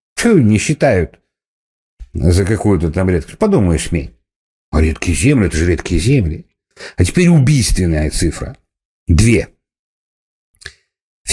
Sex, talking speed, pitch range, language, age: male, 110 wpm, 80-115 Hz, Russian, 60-79